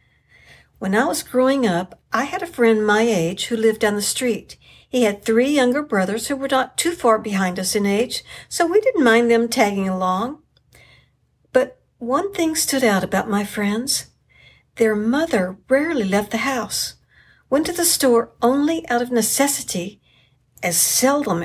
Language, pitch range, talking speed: English, 185-260 Hz, 170 wpm